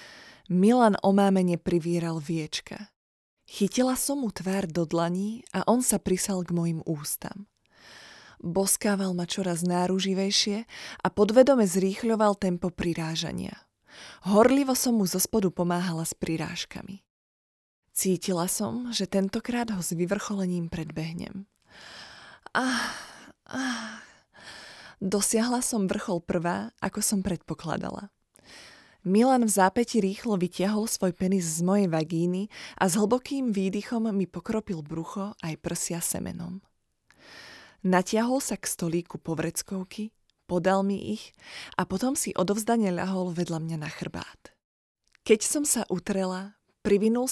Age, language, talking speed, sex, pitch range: 20-39, Slovak, 115 wpm, female, 175-215 Hz